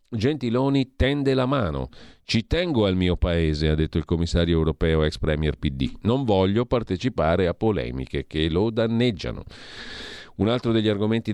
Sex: male